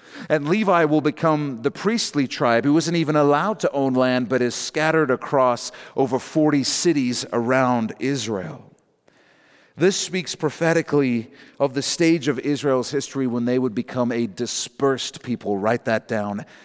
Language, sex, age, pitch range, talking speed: English, male, 40-59, 125-160 Hz, 150 wpm